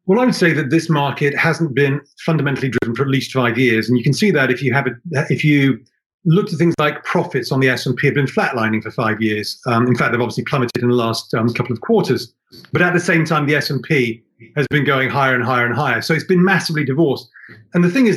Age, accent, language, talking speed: 40-59, British, English, 250 wpm